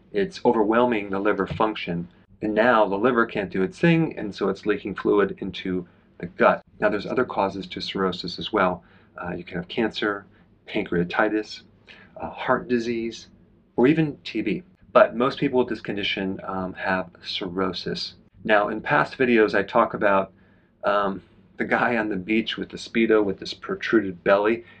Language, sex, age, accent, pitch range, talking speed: English, male, 40-59, American, 95-120 Hz, 170 wpm